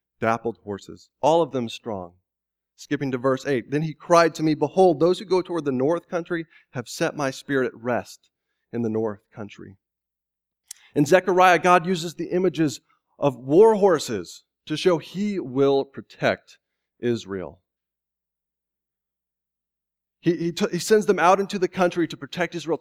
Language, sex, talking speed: English, male, 160 wpm